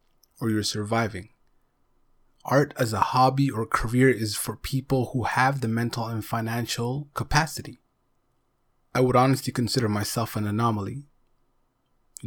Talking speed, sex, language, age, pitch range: 130 wpm, male, English, 20-39, 115-130 Hz